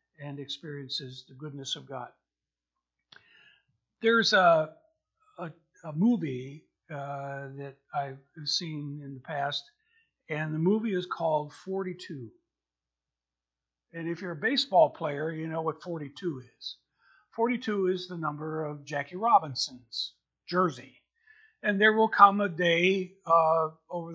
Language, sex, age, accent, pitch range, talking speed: English, male, 50-69, American, 150-210 Hz, 125 wpm